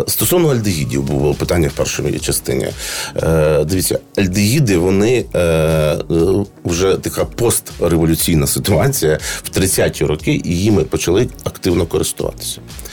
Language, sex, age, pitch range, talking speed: Ukrainian, male, 40-59, 85-125 Hz, 110 wpm